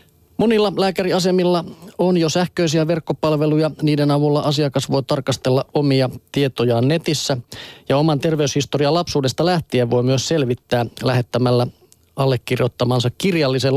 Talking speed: 110 wpm